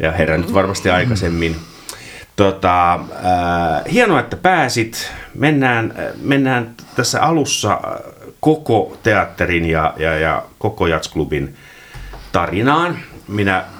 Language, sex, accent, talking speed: Finnish, male, native, 95 wpm